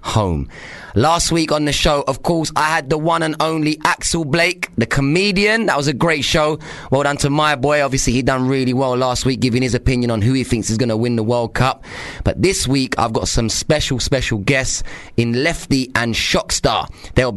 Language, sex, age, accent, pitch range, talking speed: English, male, 20-39, British, 110-145 Hz, 220 wpm